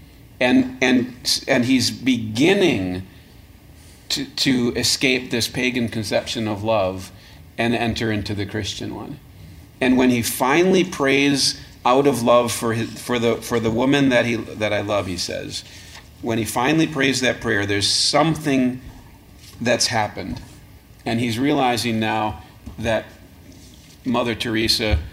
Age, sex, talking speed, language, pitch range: 40-59, male, 140 wpm, English, 95-125 Hz